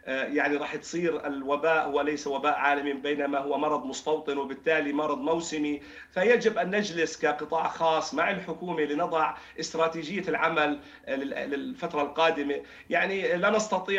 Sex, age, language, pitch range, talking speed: male, 40-59, Arabic, 155-185 Hz, 130 wpm